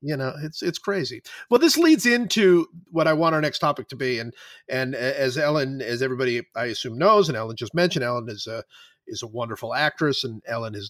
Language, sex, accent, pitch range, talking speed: English, male, American, 125-175 Hz, 220 wpm